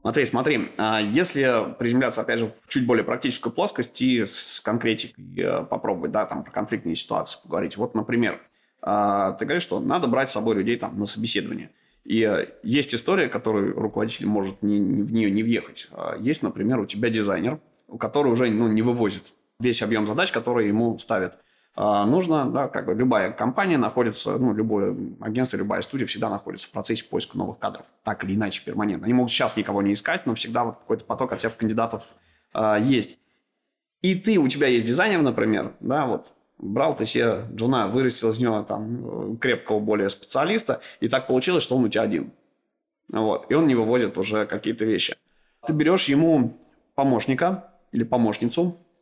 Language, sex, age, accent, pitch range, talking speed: Russian, male, 20-39, native, 105-125 Hz, 175 wpm